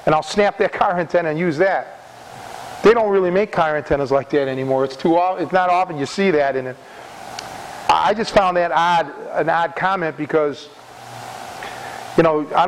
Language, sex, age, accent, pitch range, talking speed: English, male, 40-59, American, 155-195 Hz, 180 wpm